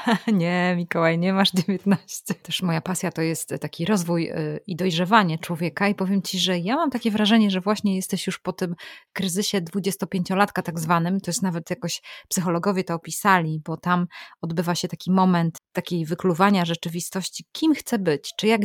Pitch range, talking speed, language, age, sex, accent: 170-200 Hz, 175 wpm, Polish, 20-39, female, native